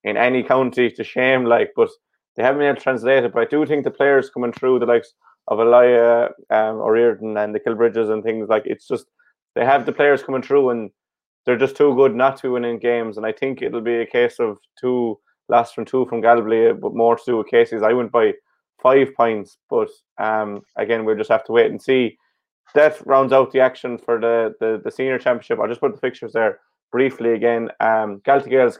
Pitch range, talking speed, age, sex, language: 115-140 Hz, 225 wpm, 20-39, male, English